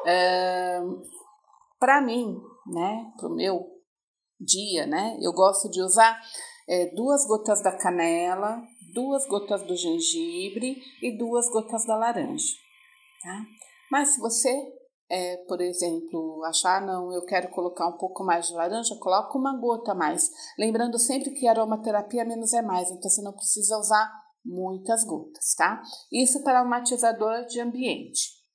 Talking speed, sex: 135 wpm, female